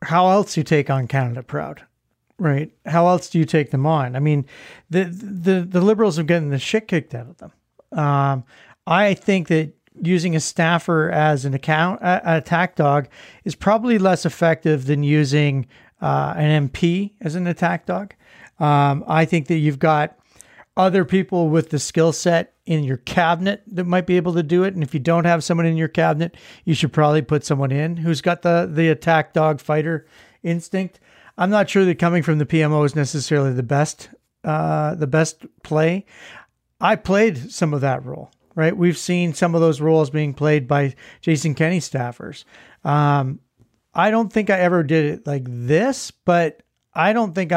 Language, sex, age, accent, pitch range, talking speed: English, male, 40-59, American, 150-175 Hz, 190 wpm